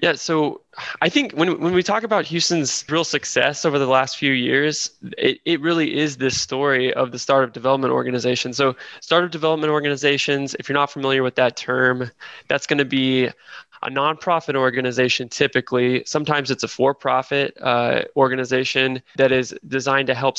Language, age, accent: English, 20-39, American